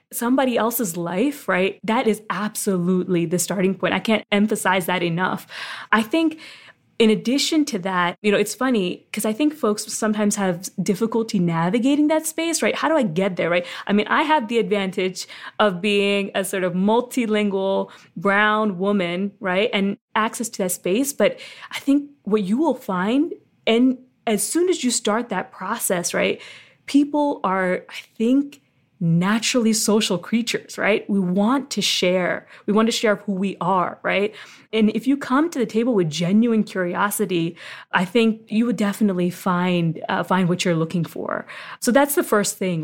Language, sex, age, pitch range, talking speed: English, female, 20-39, 185-230 Hz, 175 wpm